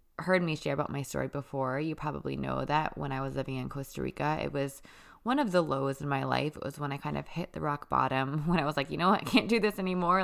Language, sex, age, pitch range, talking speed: English, female, 20-39, 140-175 Hz, 285 wpm